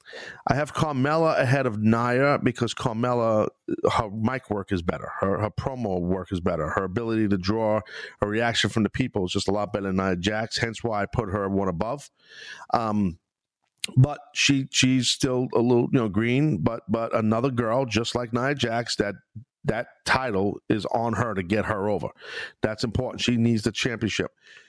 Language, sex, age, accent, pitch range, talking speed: English, male, 40-59, American, 105-130 Hz, 185 wpm